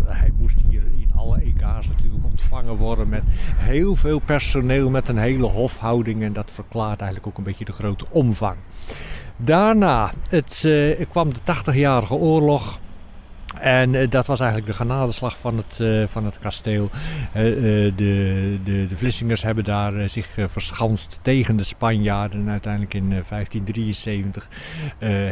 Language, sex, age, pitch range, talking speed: Dutch, male, 50-69, 105-130 Hz, 140 wpm